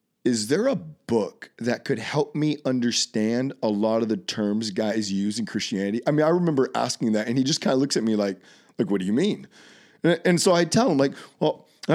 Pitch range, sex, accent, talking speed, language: 115-150 Hz, male, American, 235 wpm, English